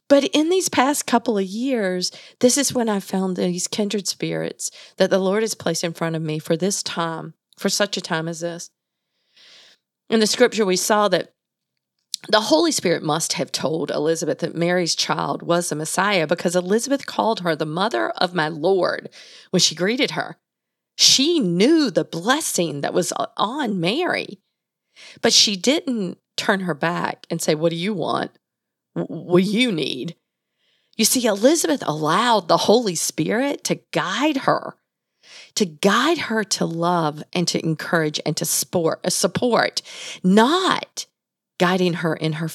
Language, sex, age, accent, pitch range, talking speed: English, female, 40-59, American, 170-235 Hz, 160 wpm